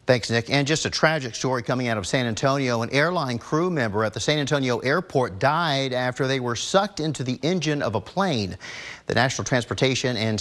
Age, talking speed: 50-69, 210 wpm